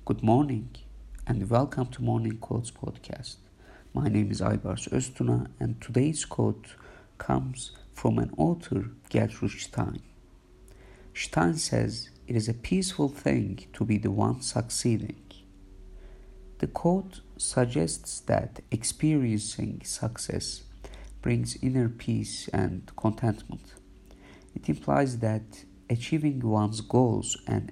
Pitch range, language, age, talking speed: 95-130 Hz, English, 50-69, 115 wpm